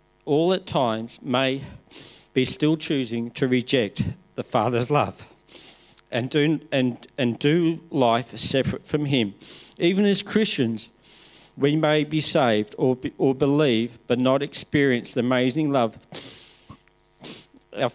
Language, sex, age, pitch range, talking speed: English, male, 40-59, 125-160 Hz, 130 wpm